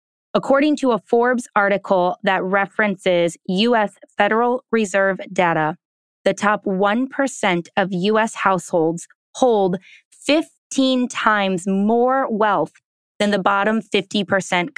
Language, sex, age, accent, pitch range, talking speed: English, female, 20-39, American, 185-230 Hz, 105 wpm